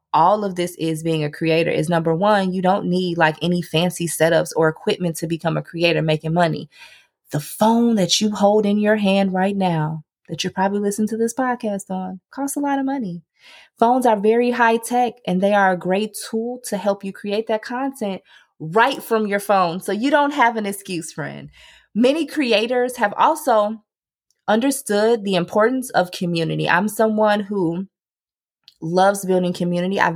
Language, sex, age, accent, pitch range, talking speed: English, female, 20-39, American, 175-235 Hz, 185 wpm